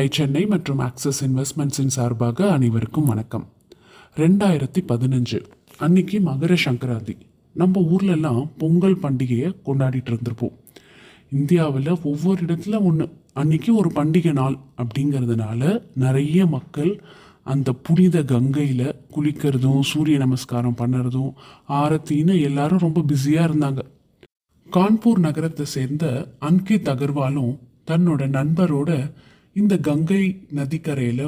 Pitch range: 135-170 Hz